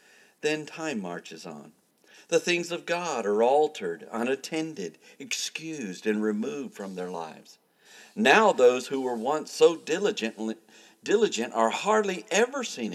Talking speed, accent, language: 135 wpm, American, English